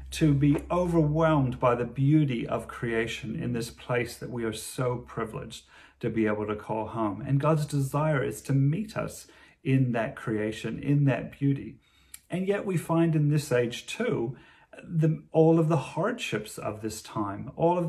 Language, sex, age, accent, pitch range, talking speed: English, male, 30-49, British, 115-155 Hz, 175 wpm